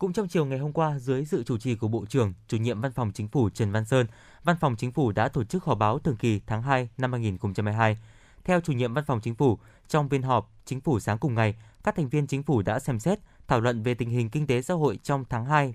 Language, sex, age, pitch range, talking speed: Vietnamese, male, 20-39, 110-145 Hz, 275 wpm